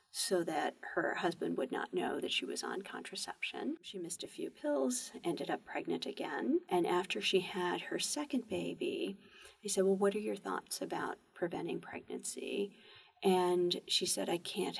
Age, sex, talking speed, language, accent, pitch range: 40-59, female, 175 wpm, English, American, 180-255 Hz